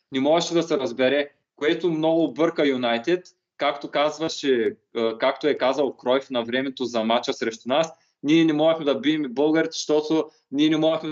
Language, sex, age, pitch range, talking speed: Bulgarian, male, 20-39, 130-160 Hz, 165 wpm